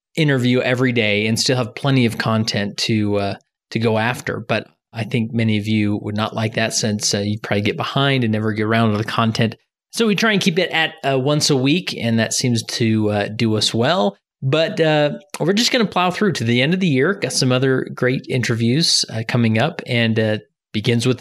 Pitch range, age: 110-140 Hz, 30-49